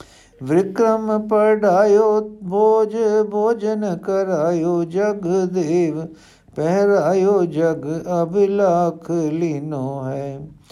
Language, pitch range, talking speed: Punjabi, 140-190 Hz, 65 wpm